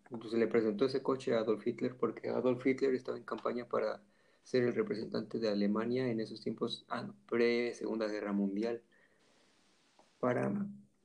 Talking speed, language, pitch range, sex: 155 wpm, Spanish, 105-120 Hz, male